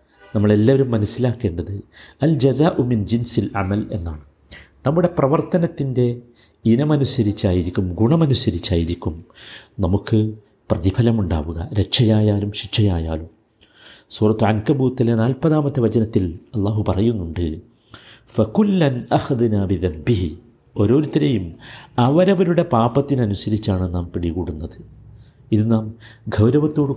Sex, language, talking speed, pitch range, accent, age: male, Malayalam, 75 wpm, 100-130 Hz, native, 50-69